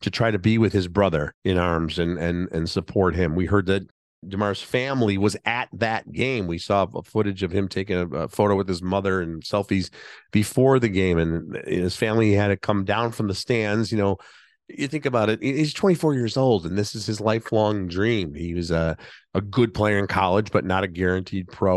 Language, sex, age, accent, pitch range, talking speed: English, male, 40-59, American, 95-115 Hz, 220 wpm